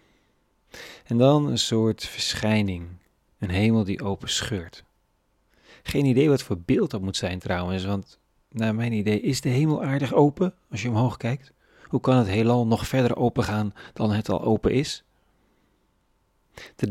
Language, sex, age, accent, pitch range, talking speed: Dutch, male, 40-59, Dutch, 100-120 Hz, 165 wpm